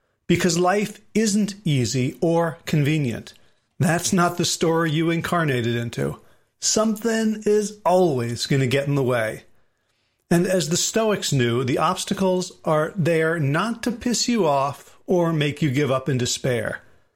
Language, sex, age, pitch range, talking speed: English, male, 40-59, 130-180 Hz, 150 wpm